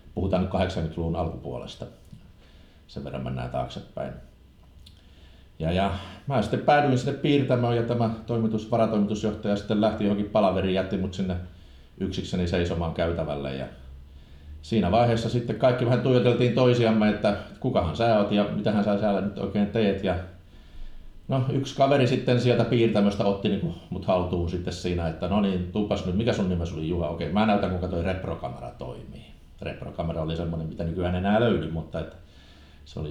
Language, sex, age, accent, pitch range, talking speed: Finnish, male, 50-69, native, 85-110 Hz, 165 wpm